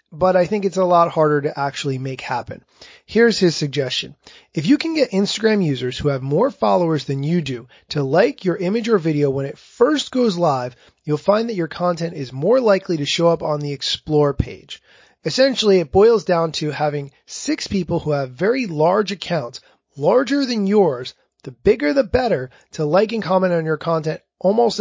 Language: English